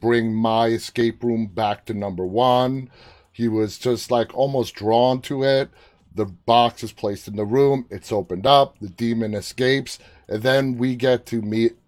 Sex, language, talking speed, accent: male, English, 175 wpm, American